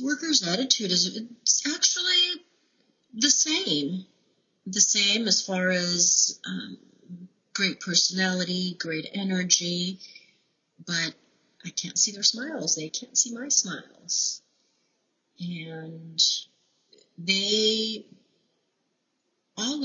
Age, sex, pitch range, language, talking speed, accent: 40-59, female, 160-205 Hz, English, 90 wpm, American